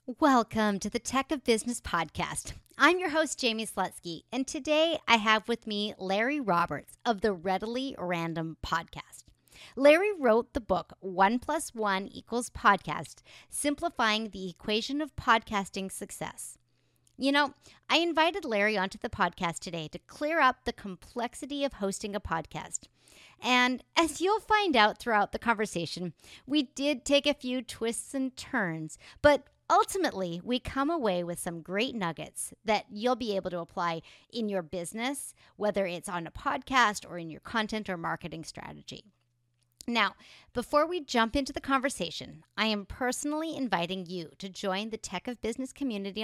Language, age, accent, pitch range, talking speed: English, 40-59, American, 185-270 Hz, 160 wpm